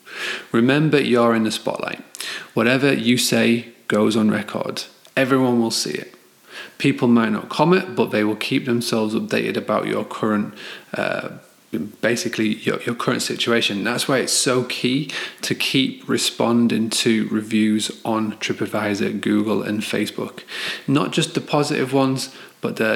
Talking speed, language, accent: 145 wpm, English, British